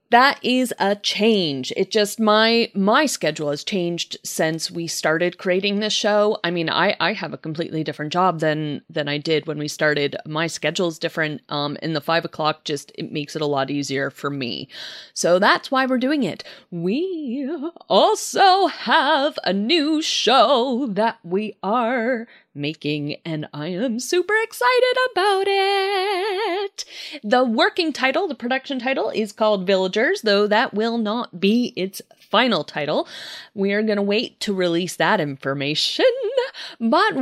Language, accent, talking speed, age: English, American, 165 wpm, 30-49